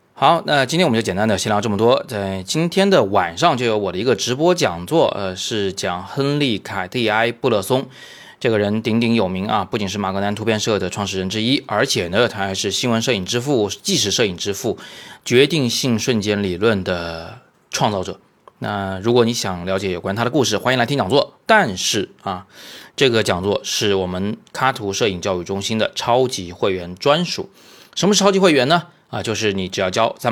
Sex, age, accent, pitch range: male, 20-39, native, 95-125 Hz